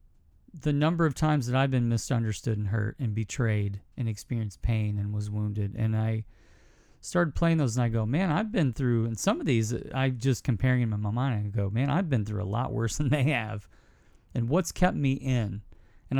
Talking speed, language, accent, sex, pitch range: 220 wpm, English, American, male, 105-135 Hz